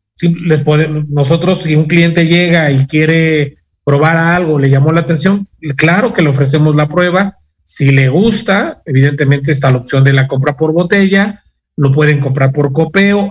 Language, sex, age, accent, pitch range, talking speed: Spanish, male, 40-59, Mexican, 145-175 Hz, 175 wpm